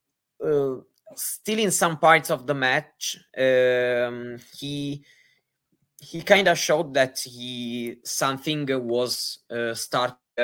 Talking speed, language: 115 wpm, English